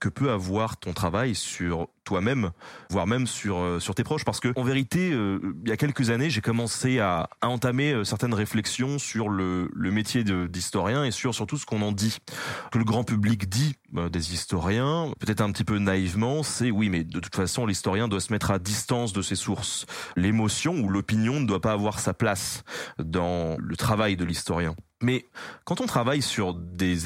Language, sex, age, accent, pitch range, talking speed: French, male, 30-49, French, 95-125 Hz, 200 wpm